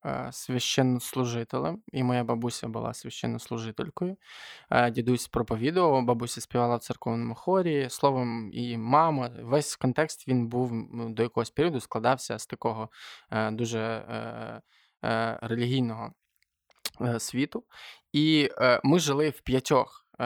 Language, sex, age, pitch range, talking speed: Ukrainian, male, 20-39, 115-140 Hz, 100 wpm